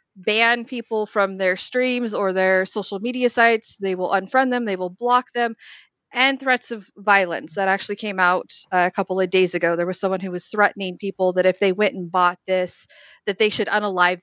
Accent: American